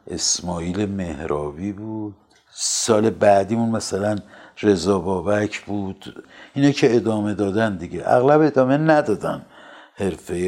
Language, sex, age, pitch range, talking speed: Persian, male, 60-79, 95-115 Hz, 105 wpm